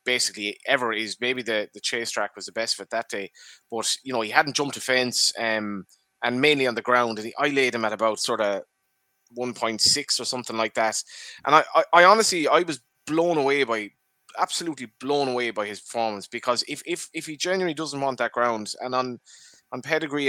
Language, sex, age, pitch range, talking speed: English, male, 20-39, 110-130 Hz, 215 wpm